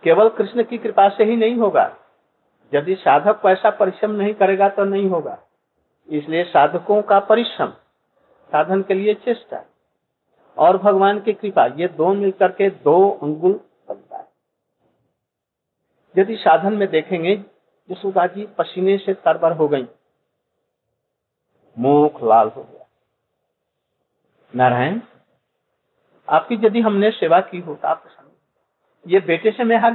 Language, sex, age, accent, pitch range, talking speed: Hindi, male, 50-69, native, 165-220 Hz, 130 wpm